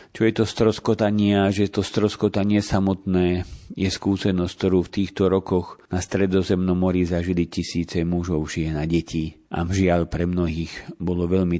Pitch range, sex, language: 85-100 Hz, male, Slovak